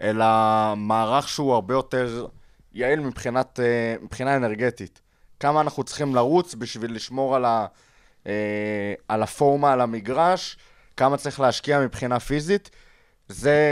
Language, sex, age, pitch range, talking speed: Hebrew, male, 20-39, 115-135 Hz, 120 wpm